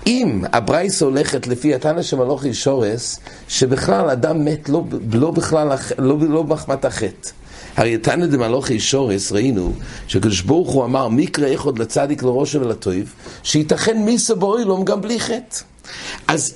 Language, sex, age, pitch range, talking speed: English, male, 60-79, 115-155 Hz, 135 wpm